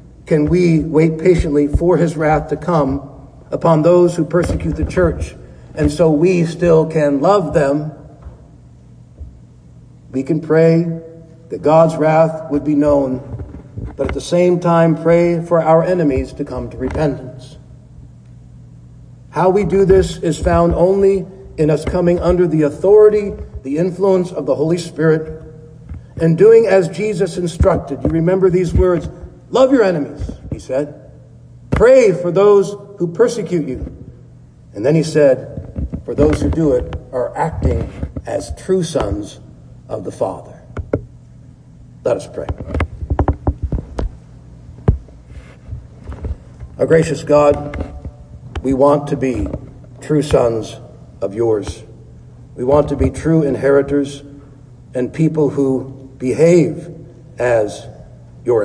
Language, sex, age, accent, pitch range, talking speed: English, male, 50-69, American, 130-170 Hz, 130 wpm